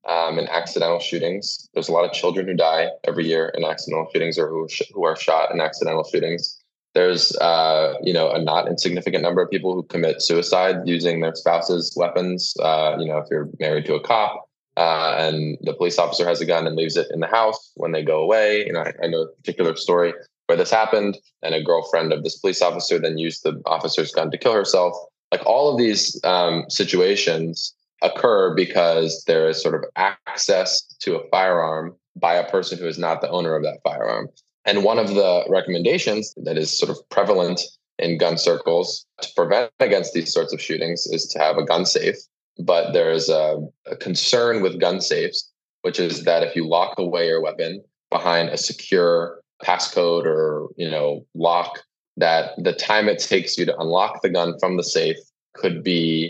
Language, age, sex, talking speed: English, 20-39, male, 200 wpm